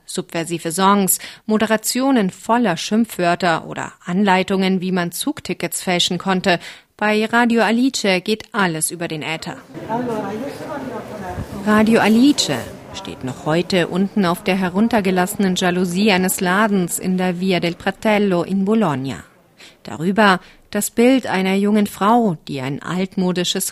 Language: German